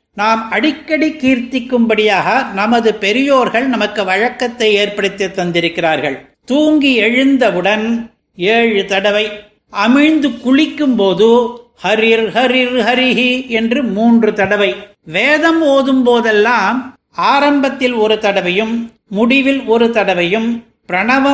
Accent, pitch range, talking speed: native, 205-245 Hz, 95 wpm